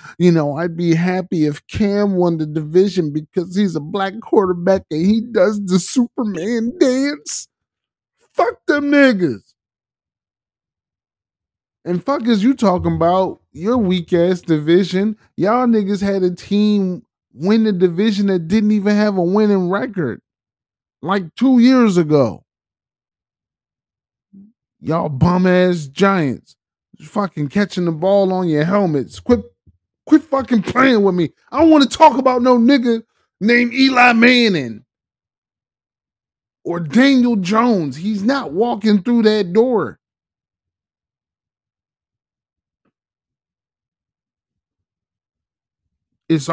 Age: 20-39